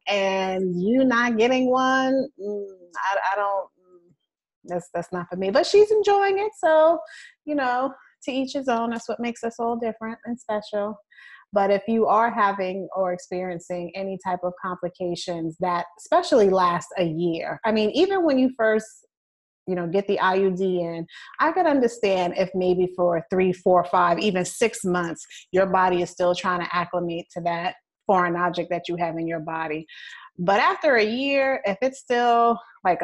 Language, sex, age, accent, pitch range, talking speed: English, female, 30-49, American, 180-245 Hz, 175 wpm